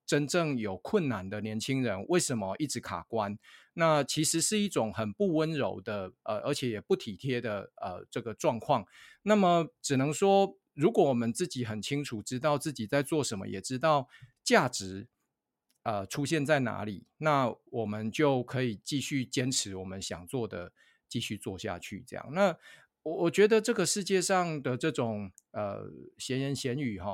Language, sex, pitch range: Chinese, male, 115-155 Hz